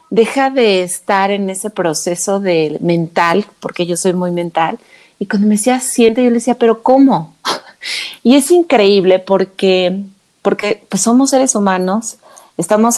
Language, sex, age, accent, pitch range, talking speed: Spanish, female, 30-49, Mexican, 175-220 Hz, 155 wpm